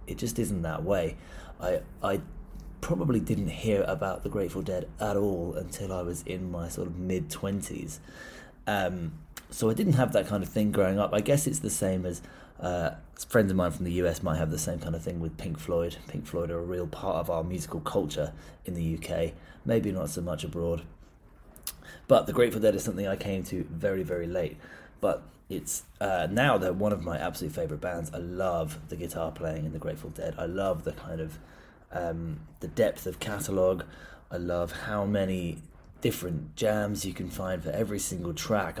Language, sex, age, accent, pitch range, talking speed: English, male, 30-49, British, 80-95 Hz, 205 wpm